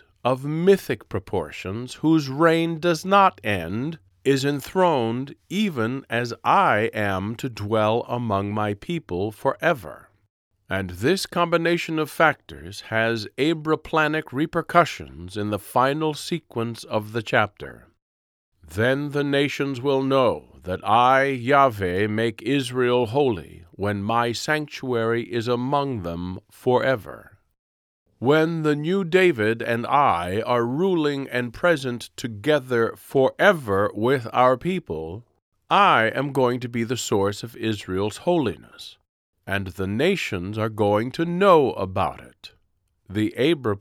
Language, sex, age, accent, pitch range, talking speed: English, male, 50-69, American, 105-150 Hz, 120 wpm